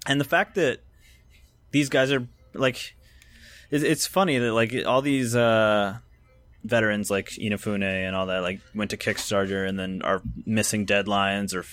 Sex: male